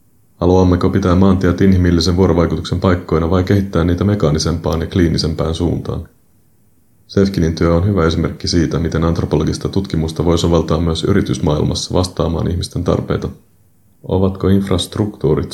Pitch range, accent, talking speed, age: 80-95 Hz, native, 120 wpm, 30-49